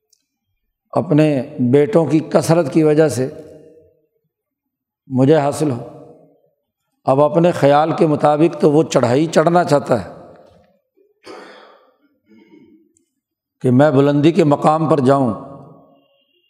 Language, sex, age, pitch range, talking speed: Urdu, male, 60-79, 140-165 Hz, 100 wpm